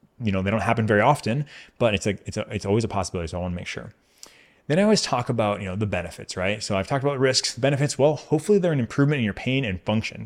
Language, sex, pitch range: English, male, 95-120 Hz